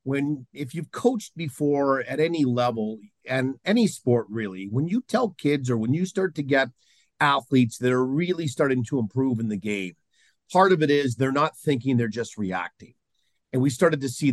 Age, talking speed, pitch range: 50-69, 195 wpm, 115-155 Hz